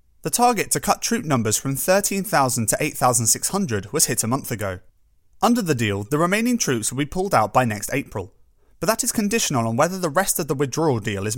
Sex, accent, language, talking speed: male, British, English, 215 wpm